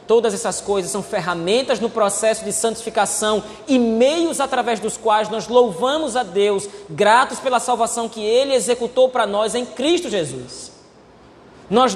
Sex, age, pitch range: male, 20-39, 200-275 Hz